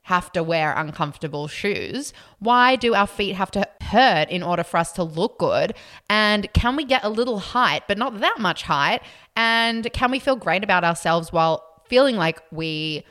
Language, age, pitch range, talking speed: English, 20-39, 165-230 Hz, 190 wpm